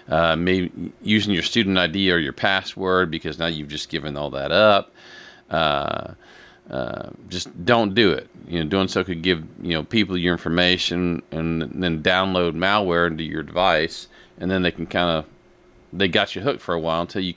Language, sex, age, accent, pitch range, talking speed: English, male, 40-59, American, 80-95 Hz, 195 wpm